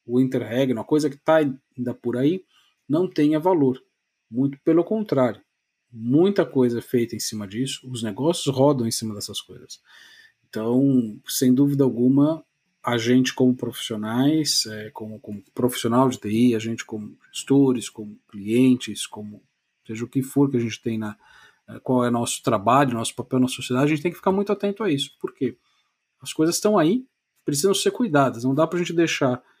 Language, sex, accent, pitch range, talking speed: Portuguese, male, Brazilian, 125-150 Hz, 180 wpm